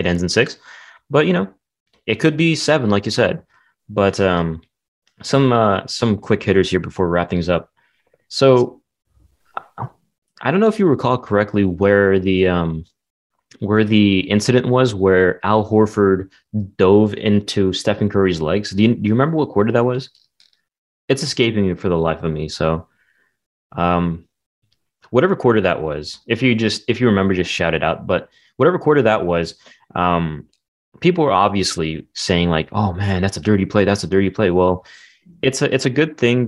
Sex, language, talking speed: male, English, 180 wpm